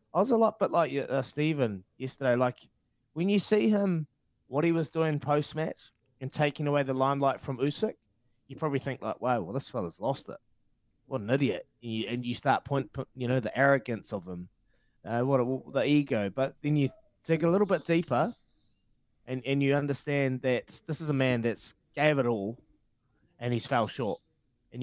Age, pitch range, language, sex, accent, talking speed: 20-39, 120-155 Hz, English, male, Australian, 195 wpm